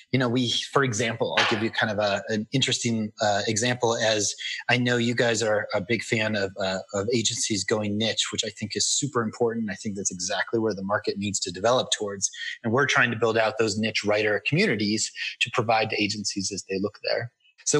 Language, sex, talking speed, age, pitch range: English, male, 225 wpm, 30-49, 105-125 Hz